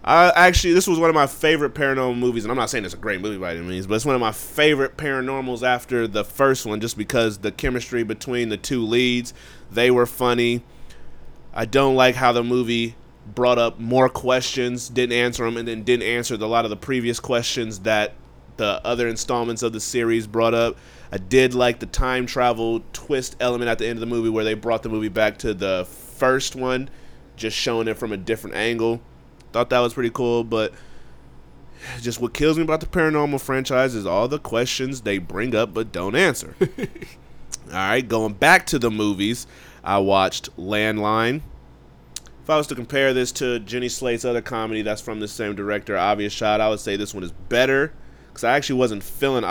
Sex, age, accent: male, 20-39, American